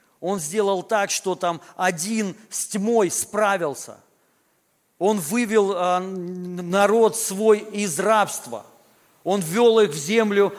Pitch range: 165-220 Hz